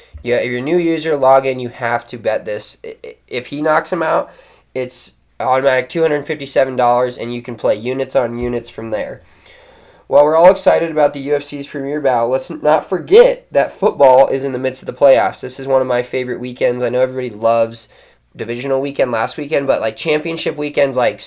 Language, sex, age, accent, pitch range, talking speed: English, male, 20-39, American, 120-145 Hz, 210 wpm